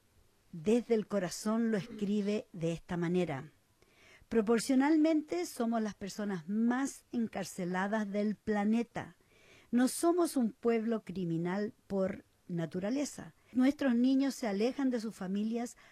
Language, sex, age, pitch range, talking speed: English, female, 50-69, 180-230 Hz, 115 wpm